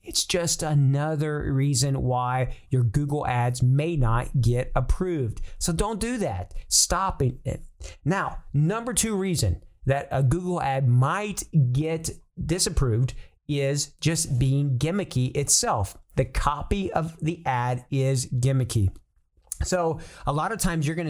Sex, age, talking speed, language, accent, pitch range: male, 40-59, 135 wpm, English, American, 130-165 Hz